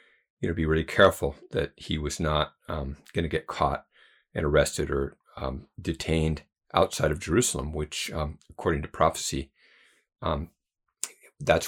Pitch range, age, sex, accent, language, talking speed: 75-90 Hz, 50-69, male, American, English, 150 wpm